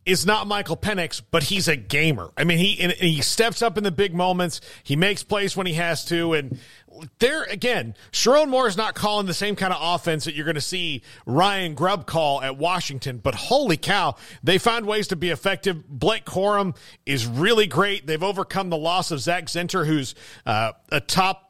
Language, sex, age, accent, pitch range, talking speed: English, male, 40-59, American, 150-195 Hz, 205 wpm